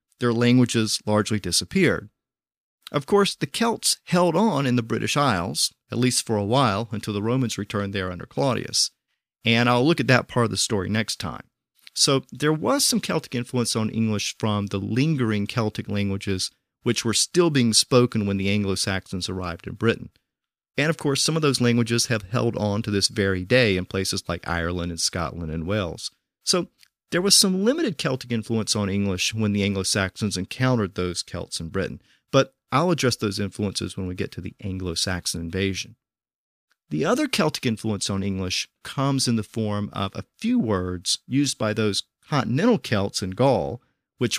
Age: 40-59